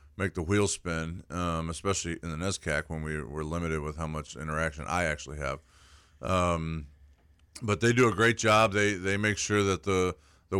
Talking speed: 195 wpm